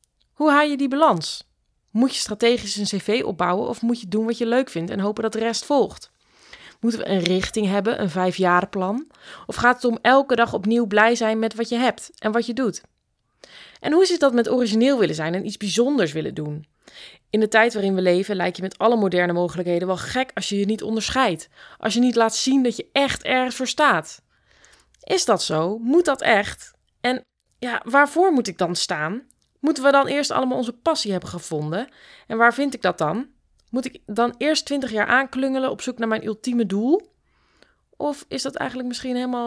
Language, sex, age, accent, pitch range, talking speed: Dutch, female, 20-39, Dutch, 185-255 Hz, 210 wpm